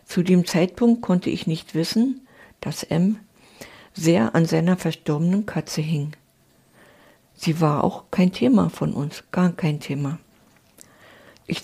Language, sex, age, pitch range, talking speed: German, female, 60-79, 155-185 Hz, 135 wpm